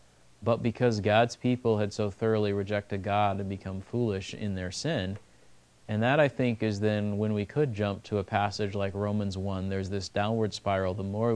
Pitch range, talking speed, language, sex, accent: 95-115 Hz, 195 wpm, English, male, American